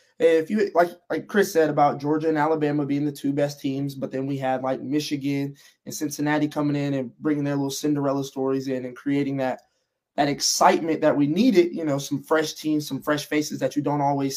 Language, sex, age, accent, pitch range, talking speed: English, male, 20-39, American, 140-175 Hz, 215 wpm